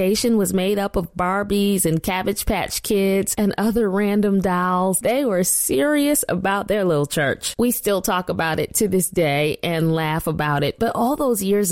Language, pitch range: English, 170-235 Hz